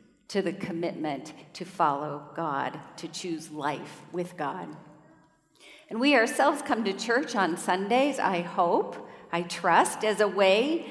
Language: English